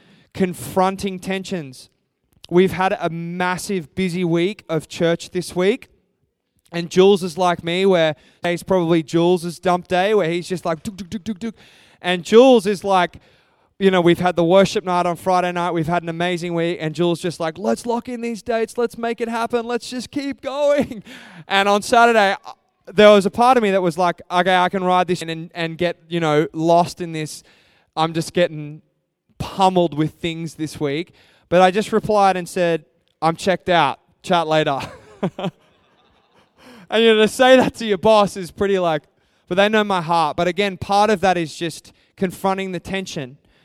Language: English